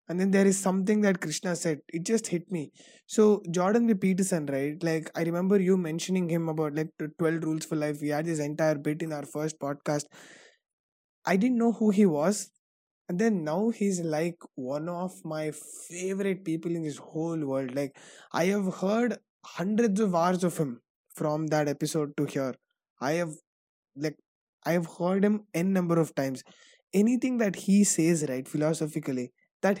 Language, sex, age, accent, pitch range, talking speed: English, male, 20-39, Indian, 160-205 Hz, 175 wpm